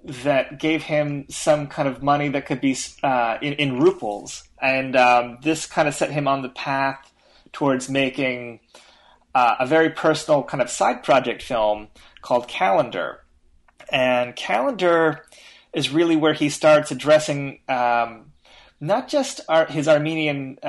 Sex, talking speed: male, 150 wpm